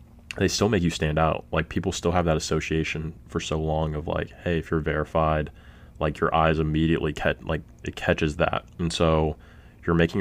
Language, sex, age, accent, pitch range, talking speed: English, male, 20-39, American, 75-85 Hz, 200 wpm